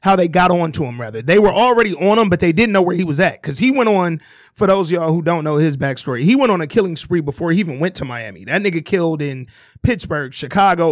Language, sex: English, male